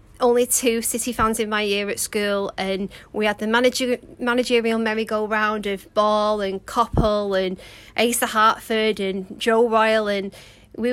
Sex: female